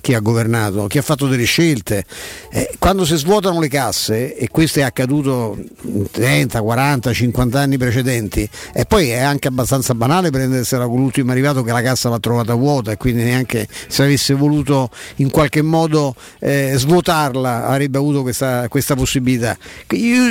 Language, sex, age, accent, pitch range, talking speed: Italian, male, 50-69, native, 135-170 Hz, 165 wpm